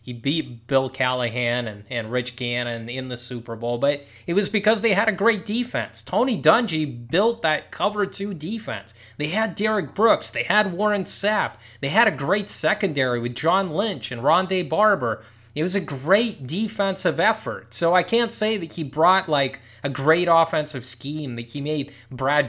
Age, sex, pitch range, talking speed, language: 20-39, male, 125-200 Hz, 185 wpm, English